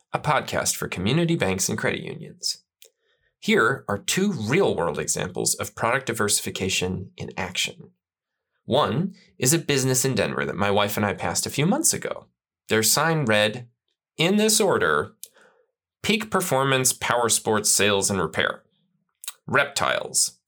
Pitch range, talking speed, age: 120-200 Hz, 140 wpm, 20-39